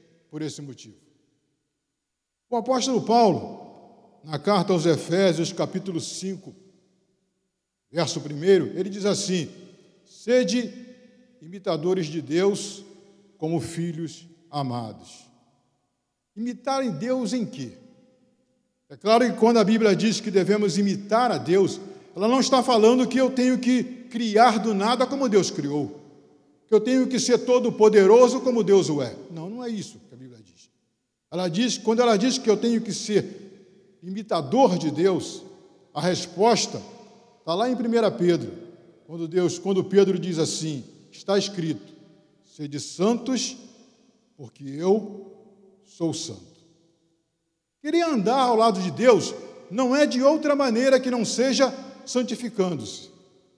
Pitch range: 170-245 Hz